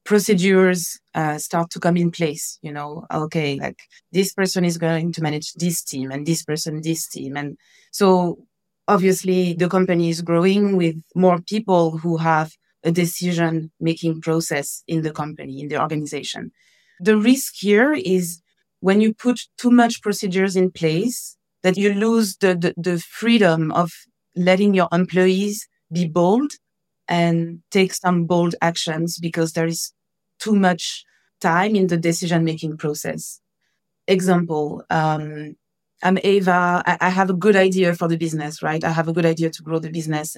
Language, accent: English, French